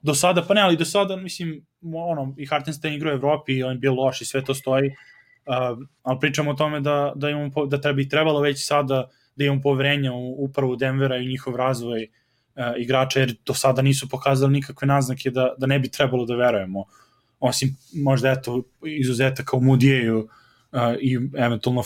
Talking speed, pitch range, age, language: 195 wpm, 125-140 Hz, 20-39, English